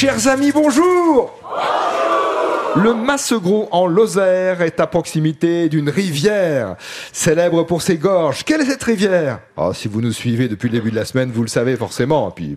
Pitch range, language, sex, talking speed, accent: 115-175 Hz, French, male, 170 wpm, French